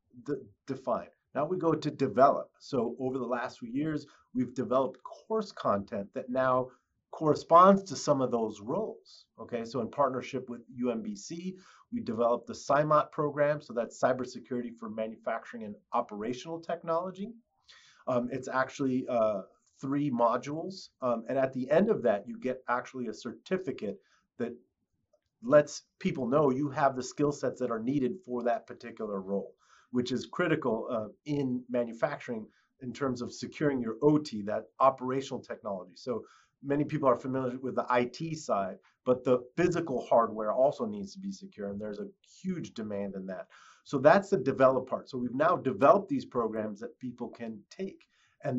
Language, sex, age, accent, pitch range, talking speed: English, male, 40-59, American, 120-150 Hz, 165 wpm